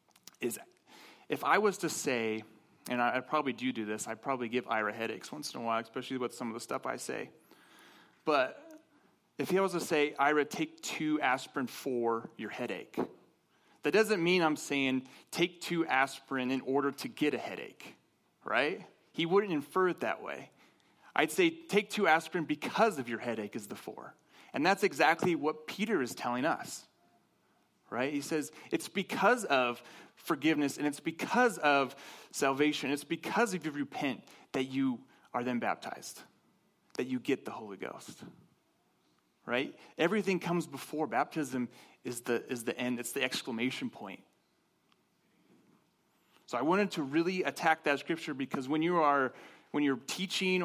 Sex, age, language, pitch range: male, 30-49, English, 130-175 Hz